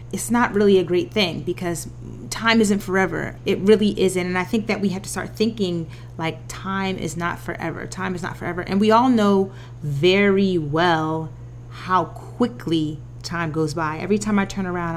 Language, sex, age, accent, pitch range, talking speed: English, female, 30-49, American, 155-200 Hz, 190 wpm